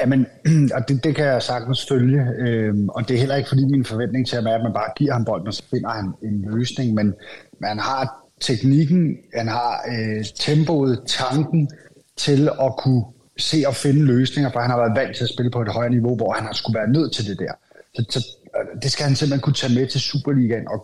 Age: 30-49